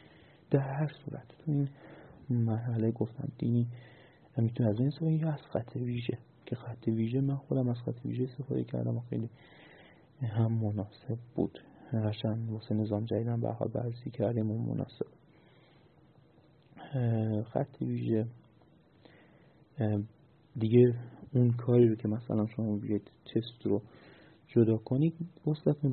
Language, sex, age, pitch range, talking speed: Persian, male, 30-49, 110-140 Hz, 135 wpm